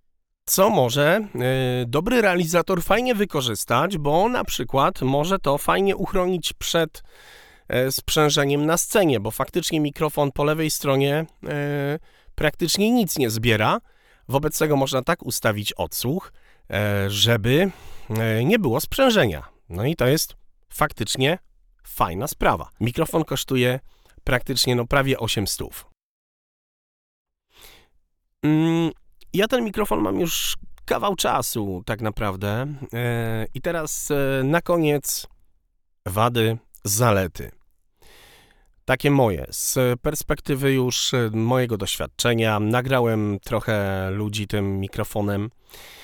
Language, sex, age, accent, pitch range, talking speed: Polish, male, 40-59, native, 105-155 Hz, 110 wpm